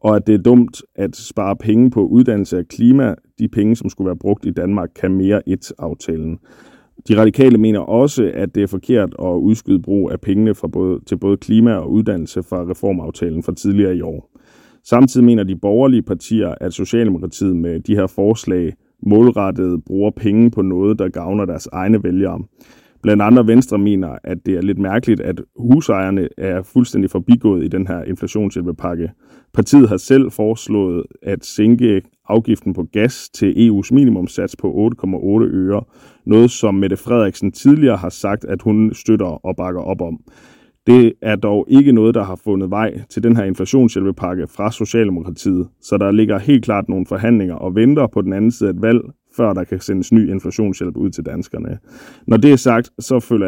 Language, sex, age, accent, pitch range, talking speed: Danish, male, 30-49, native, 95-115 Hz, 185 wpm